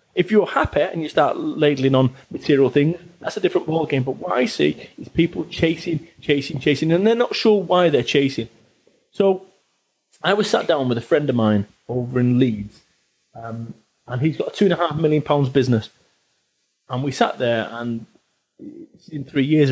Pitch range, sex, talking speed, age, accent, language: 135-210 Hz, male, 180 wpm, 30-49, British, English